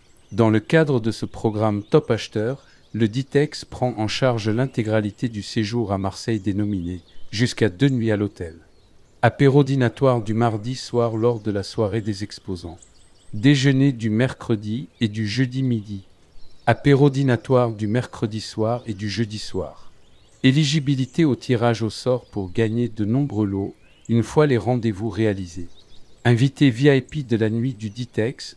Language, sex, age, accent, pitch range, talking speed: French, male, 50-69, French, 105-125 Hz, 155 wpm